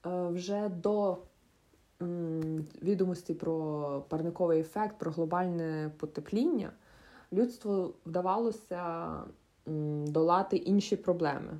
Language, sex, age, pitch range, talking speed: Ukrainian, female, 20-39, 160-210 Hz, 70 wpm